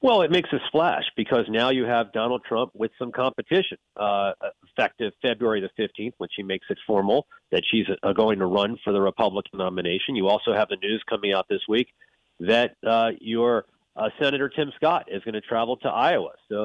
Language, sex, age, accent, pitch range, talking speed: English, male, 40-59, American, 110-140 Hz, 205 wpm